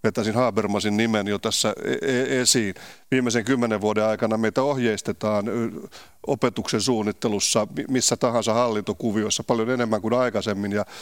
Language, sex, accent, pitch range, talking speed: Finnish, male, native, 110-125 Hz, 120 wpm